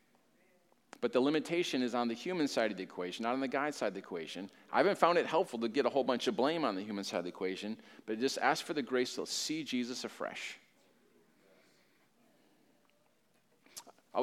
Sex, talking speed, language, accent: male, 205 wpm, English, American